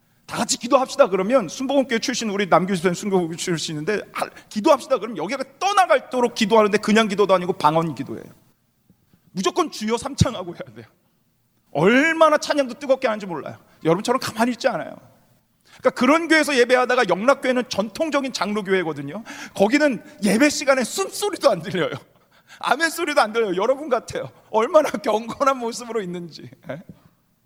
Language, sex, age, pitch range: Korean, male, 40-59, 215-295 Hz